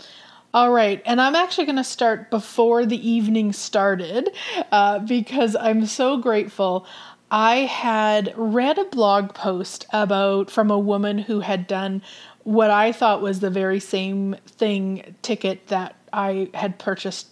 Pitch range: 200-255 Hz